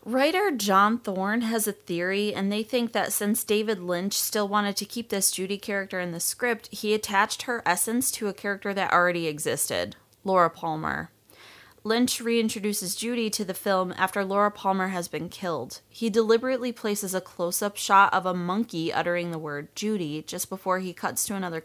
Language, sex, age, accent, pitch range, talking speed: English, female, 20-39, American, 175-215 Hz, 185 wpm